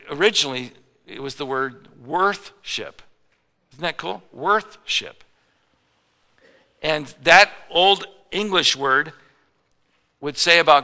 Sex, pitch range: male, 125-155 Hz